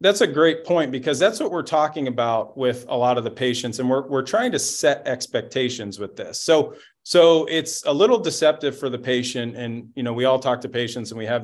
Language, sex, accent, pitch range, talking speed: English, male, American, 115-135 Hz, 235 wpm